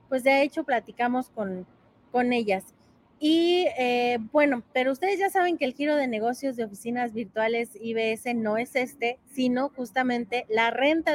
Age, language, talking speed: 30-49, Spanish, 160 wpm